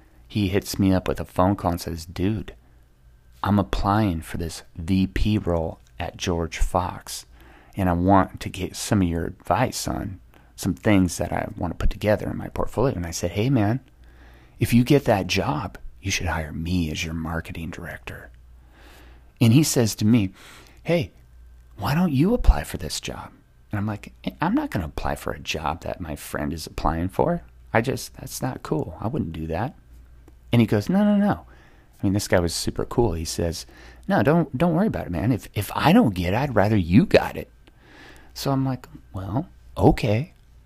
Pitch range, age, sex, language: 75-105 Hz, 30-49, male, English